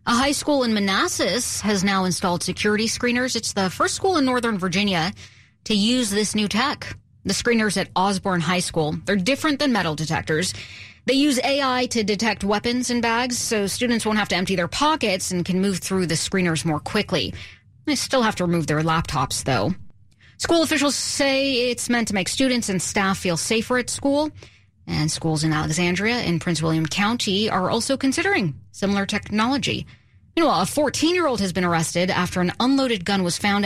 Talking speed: 185 wpm